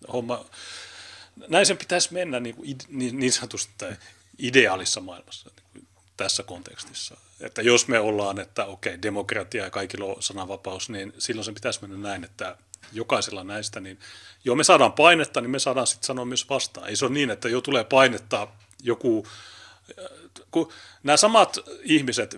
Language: Finnish